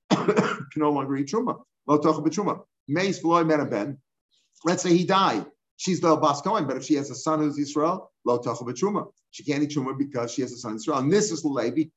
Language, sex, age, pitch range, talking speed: English, male, 50-69, 145-175 Hz, 180 wpm